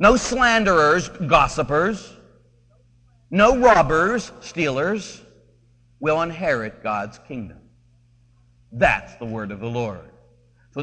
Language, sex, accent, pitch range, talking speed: English, male, American, 120-185 Hz, 95 wpm